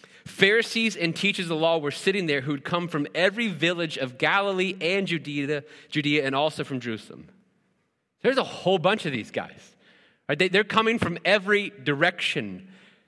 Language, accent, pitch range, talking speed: English, American, 130-175 Hz, 160 wpm